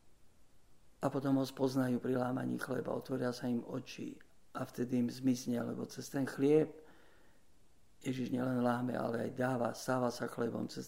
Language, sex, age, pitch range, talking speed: Slovak, male, 50-69, 115-130 Hz, 160 wpm